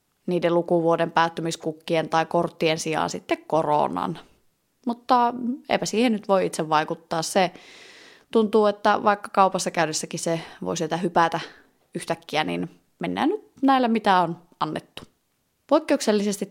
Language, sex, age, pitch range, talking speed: Finnish, female, 20-39, 165-220 Hz, 125 wpm